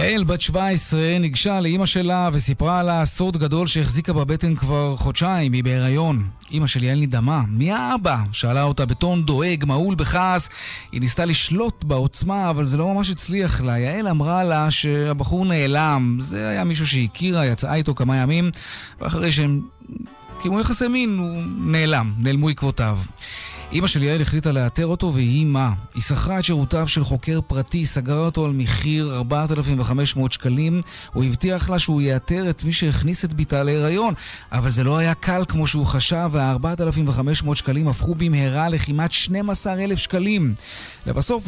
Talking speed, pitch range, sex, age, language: 155 wpm, 135-175 Hz, male, 30-49, Hebrew